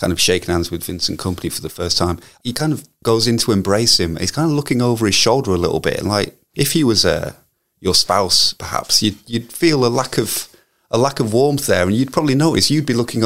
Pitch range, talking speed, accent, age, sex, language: 90-115 Hz, 255 wpm, British, 30-49, male, English